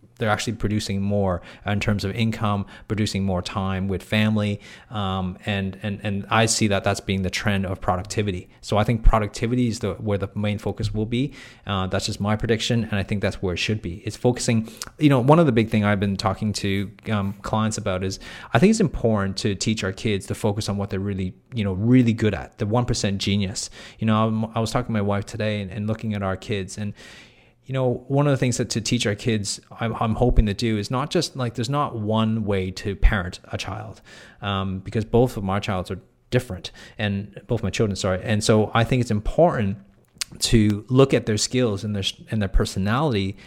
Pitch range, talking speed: 100-115 Hz, 230 wpm